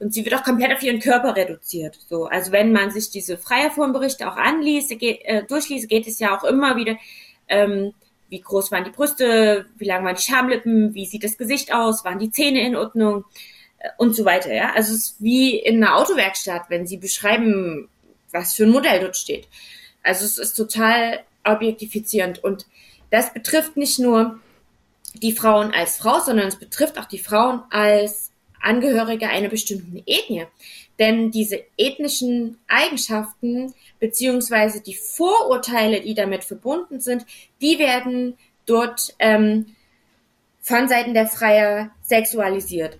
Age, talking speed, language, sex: 20-39, 160 wpm, German, female